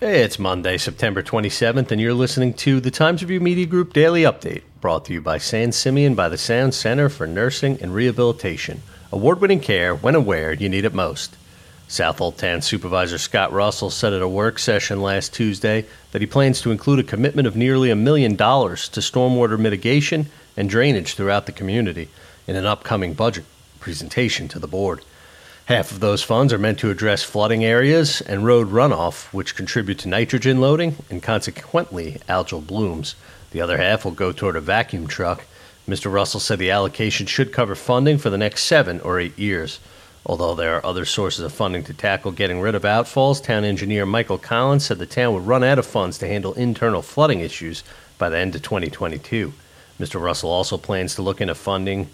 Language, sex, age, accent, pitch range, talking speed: English, male, 40-59, American, 95-130 Hz, 195 wpm